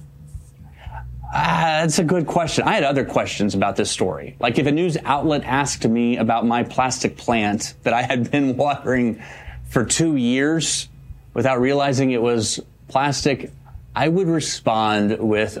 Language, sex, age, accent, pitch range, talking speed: English, male, 30-49, American, 115-145 Hz, 155 wpm